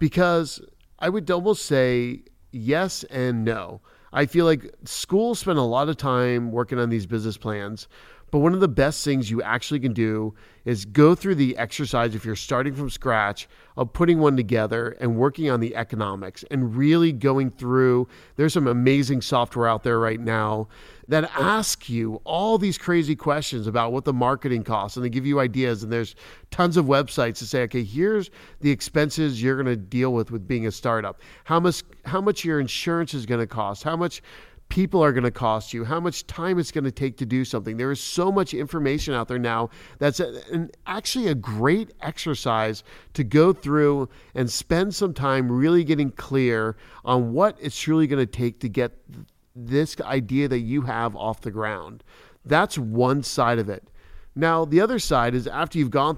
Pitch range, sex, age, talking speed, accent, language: 115-155 Hz, male, 40-59, 190 wpm, American, English